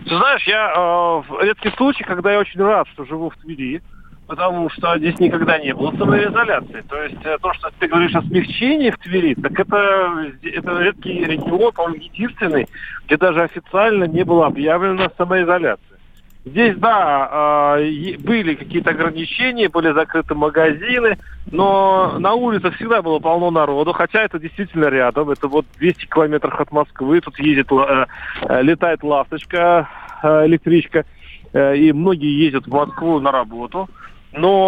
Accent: native